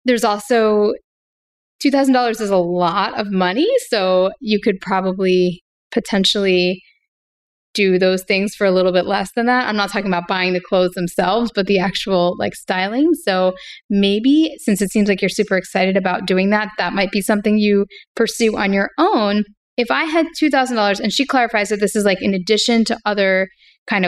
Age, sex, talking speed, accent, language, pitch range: 10-29, female, 180 wpm, American, English, 190-235 Hz